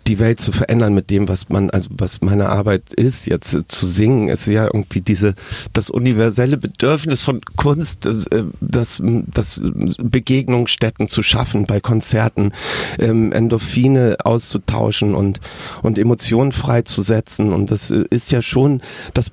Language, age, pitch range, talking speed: German, 40-59, 105-130 Hz, 135 wpm